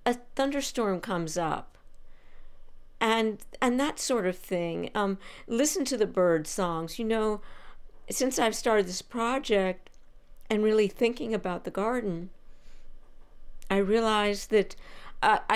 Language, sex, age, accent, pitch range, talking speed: English, female, 50-69, American, 190-240 Hz, 125 wpm